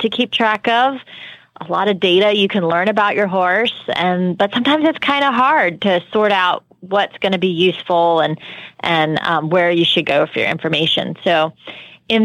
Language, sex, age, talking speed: English, female, 30-49, 200 wpm